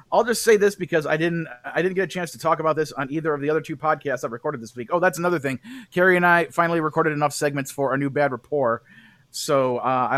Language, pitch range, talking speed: English, 135-180 Hz, 270 wpm